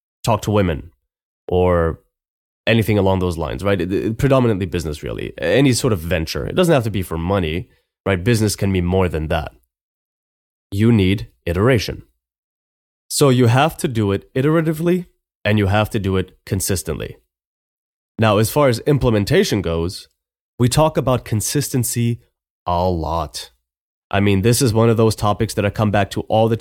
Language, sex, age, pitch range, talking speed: English, male, 20-39, 90-120 Hz, 165 wpm